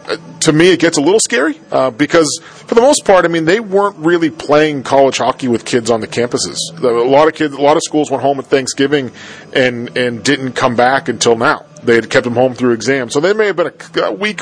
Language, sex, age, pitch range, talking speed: English, male, 40-59, 115-145 Hz, 245 wpm